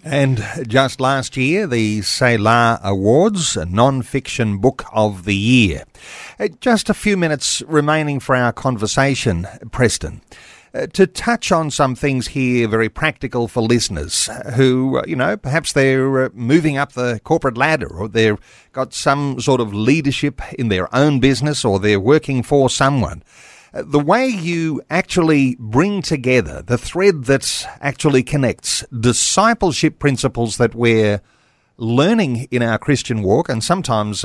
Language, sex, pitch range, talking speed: English, male, 110-145 Hz, 140 wpm